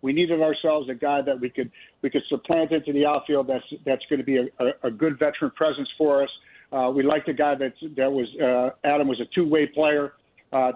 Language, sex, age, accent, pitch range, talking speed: English, male, 50-69, American, 130-150 Hz, 235 wpm